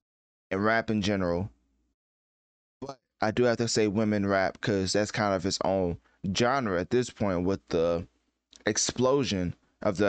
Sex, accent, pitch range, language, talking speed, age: male, American, 95-115 Hz, English, 160 wpm, 20-39